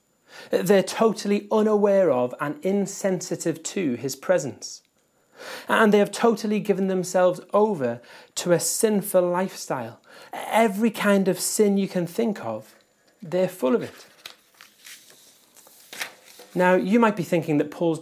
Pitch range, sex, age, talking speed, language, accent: 155-205 Hz, male, 30-49, 130 wpm, English, British